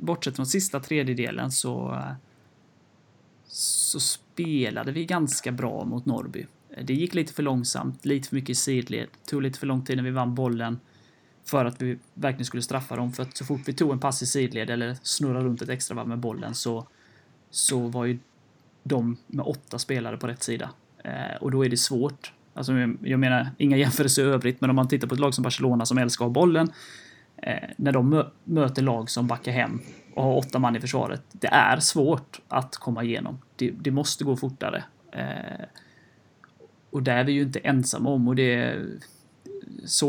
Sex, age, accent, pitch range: male, 30-49, native, 120-140 Hz